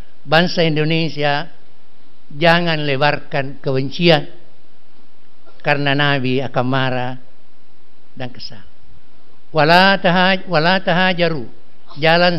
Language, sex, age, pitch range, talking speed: Indonesian, male, 60-79, 135-155 Hz, 60 wpm